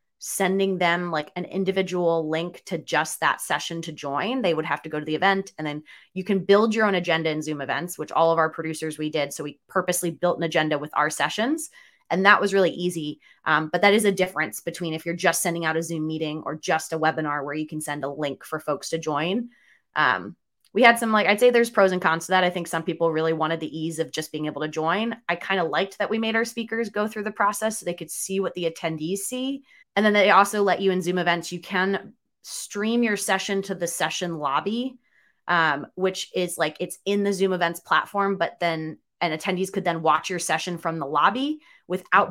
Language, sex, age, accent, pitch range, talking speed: English, female, 20-39, American, 160-200 Hz, 240 wpm